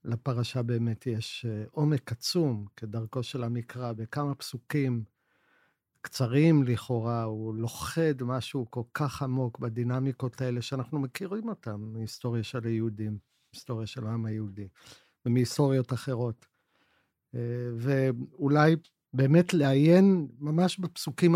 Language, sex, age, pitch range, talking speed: Hebrew, male, 50-69, 115-145 Hz, 105 wpm